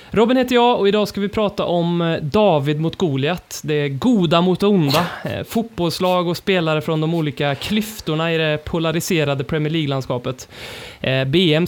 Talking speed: 150 wpm